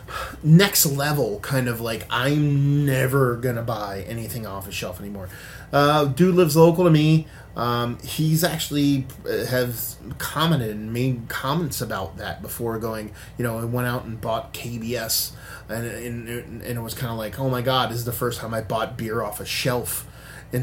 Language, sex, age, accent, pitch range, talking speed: English, male, 20-39, American, 110-135 Hz, 185 wpm